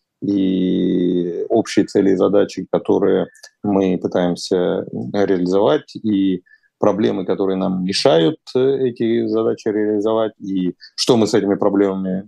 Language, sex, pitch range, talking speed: Russian, male, 95-145 Hz, 110 wpm